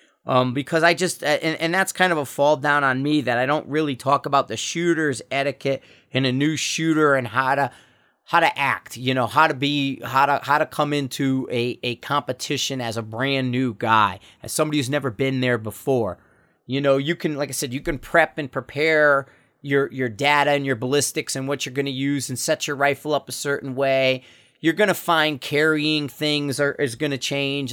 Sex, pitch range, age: male, 125-150 Hz, 30-49